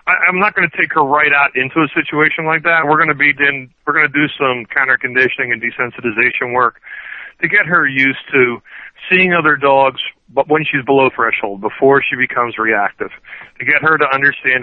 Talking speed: 200 wpm